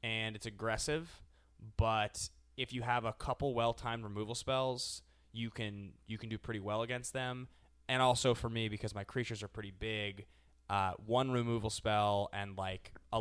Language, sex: English, male